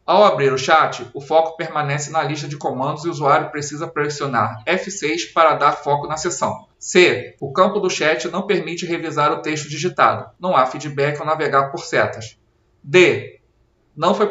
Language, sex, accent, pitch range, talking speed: Portuguese, male, Brazilian, 135-175 Hz, 180 wpm